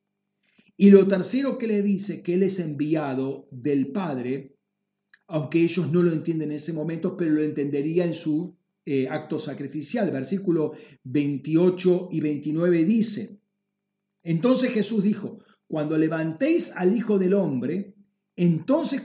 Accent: Argentinian